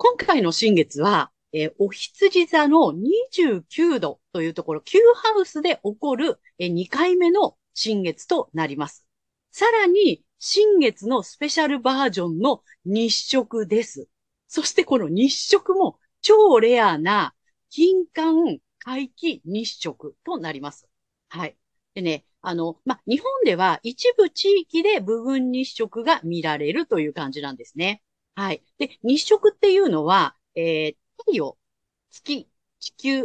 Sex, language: female, Japanese